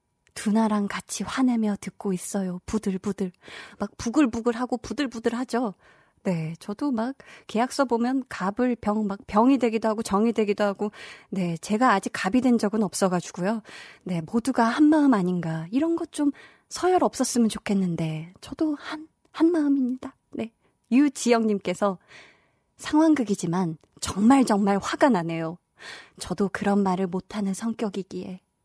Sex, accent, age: female, native, 20-39